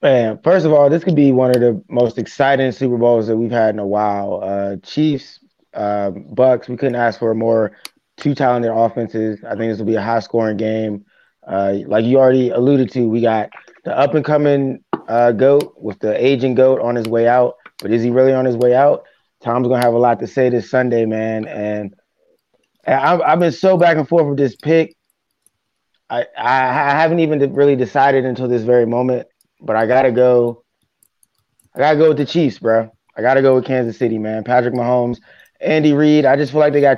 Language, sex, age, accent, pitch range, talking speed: English, male, 20-39, American, 115-135 Hz, 210 wpm